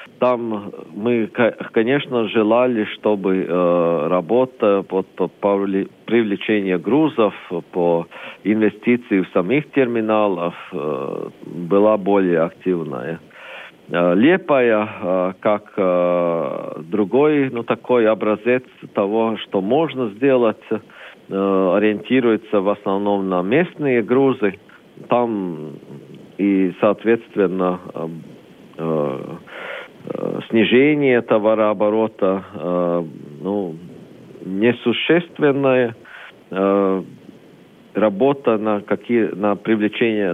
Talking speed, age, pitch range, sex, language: 70 wpm, 50-69, 95-120 Hz, male, Russian